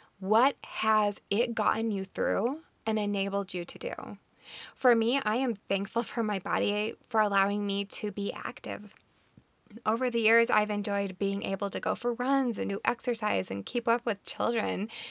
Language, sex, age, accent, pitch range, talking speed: English, female, 20-39, American, 195-235 Hz, 175 wpm